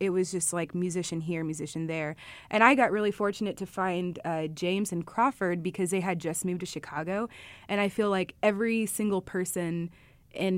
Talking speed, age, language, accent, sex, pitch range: 195 wpm, 20-39, English, American, female, 170-205 Hz